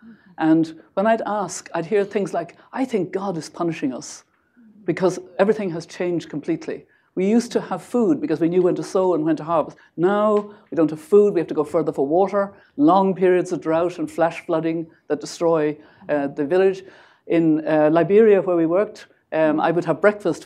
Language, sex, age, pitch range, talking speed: English, female, 60-79, 155-205 Hz, 200 wpm